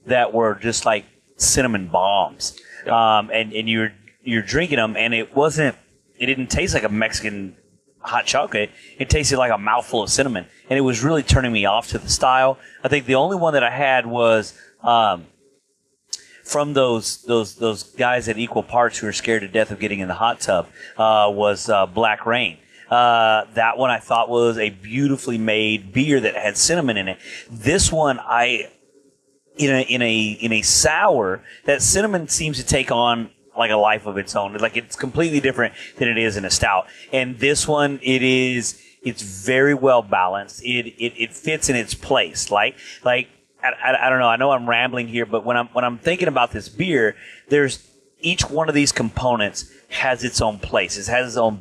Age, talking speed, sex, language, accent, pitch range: 30-49, 200 wpm, male, English, American, 110-130 Hz